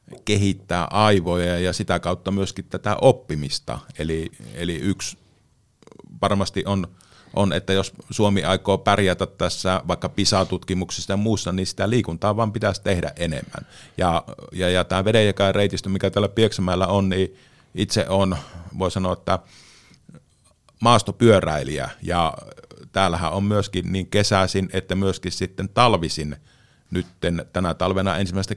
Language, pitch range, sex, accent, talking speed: Finnish, 90-105 Hz, male, native, 130 wpm